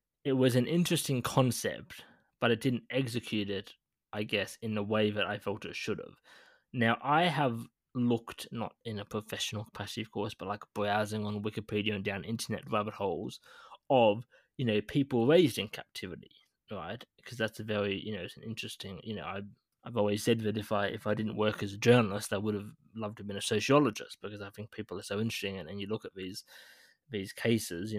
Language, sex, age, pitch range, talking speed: English, male, 20-39, 100-115 Hz, 215 wpm